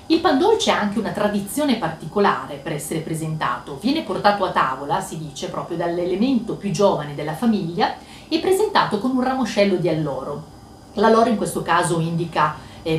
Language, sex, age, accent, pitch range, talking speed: Italian, female, 40-59, native, 160-205 Hz, 160 wpm